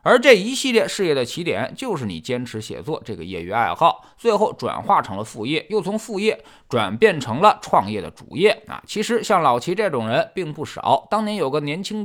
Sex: male